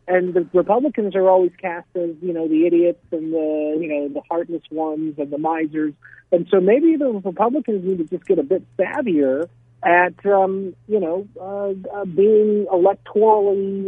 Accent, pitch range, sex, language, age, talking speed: American, 170-210 Hz, male, English, 50-69, 175 wpm